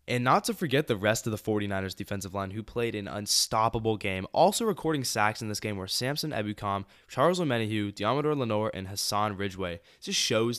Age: 10-29